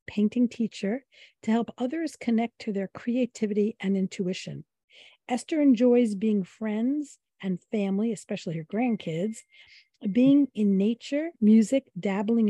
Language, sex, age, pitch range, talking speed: English, female, 50-69, 195-245 Hz, 120 wpm